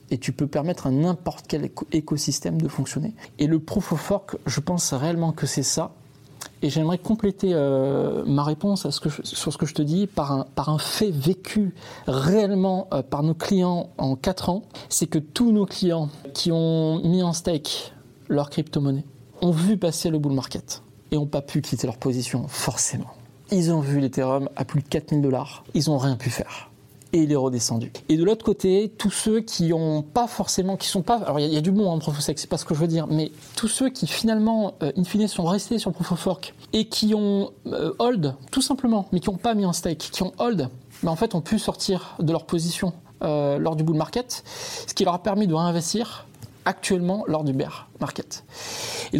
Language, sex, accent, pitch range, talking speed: French, male, French, 145-195 Hz, 220 wpm